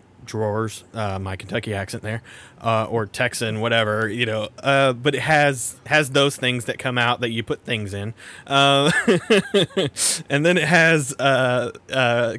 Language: English